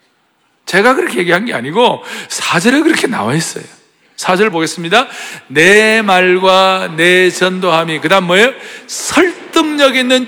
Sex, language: male, Korean